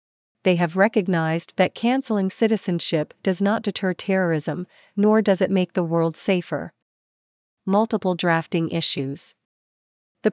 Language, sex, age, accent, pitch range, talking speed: English, female, 40-59, American, 170-210 Hz, 120 wpm